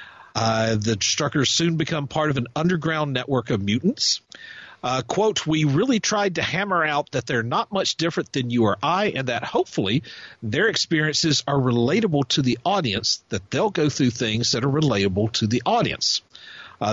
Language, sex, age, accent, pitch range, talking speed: English, male, 50-69, American, 115-155 Hz, 180 wpm